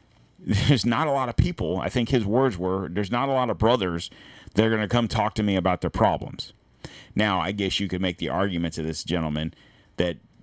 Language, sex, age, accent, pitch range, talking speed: English, male, 40-59, American, 95-125 Hz, 230 wpm